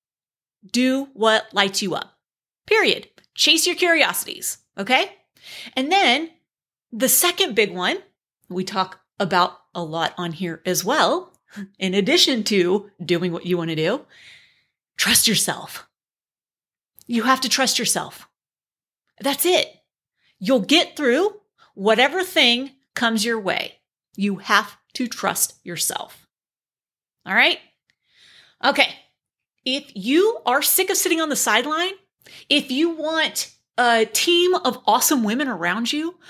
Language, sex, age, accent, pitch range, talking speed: English, female, 30-49, American, 210-300 Hz, 130 wpm